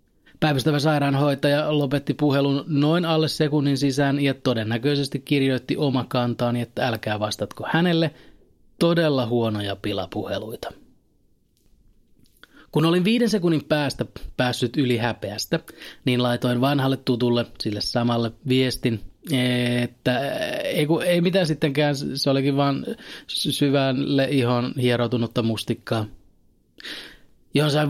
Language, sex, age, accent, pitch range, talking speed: Finnish, male, 30-49, native, 120-145 Hz, 105 wpm